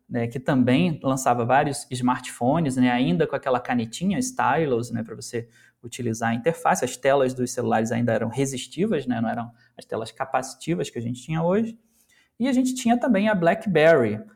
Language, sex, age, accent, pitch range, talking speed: Portuguese, male, 20-39, Brazilian, 125-180 Hz, 180 wpm